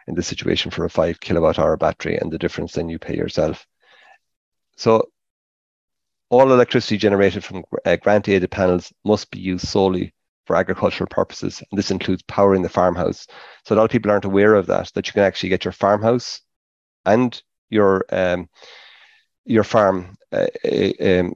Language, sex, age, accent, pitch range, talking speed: English, male, 30-49, Irish, 90-100 Hz, 160 wpm